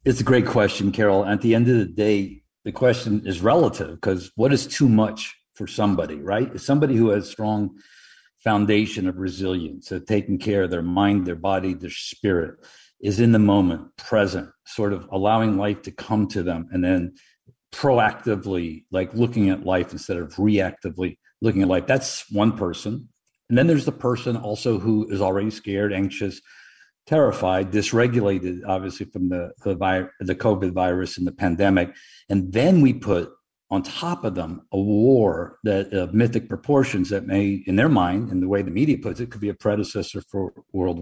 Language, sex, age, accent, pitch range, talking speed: English, male, 50-69, American, 95-110 Hz, 185 wpm